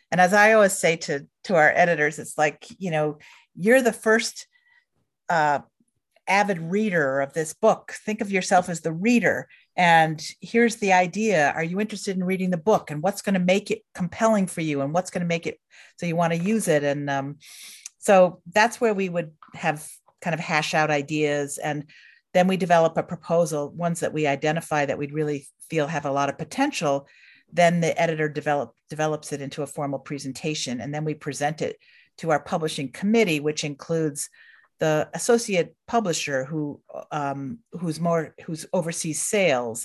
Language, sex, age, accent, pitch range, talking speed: English, female, 50-69, American, 150-185 Hz, 180 wpm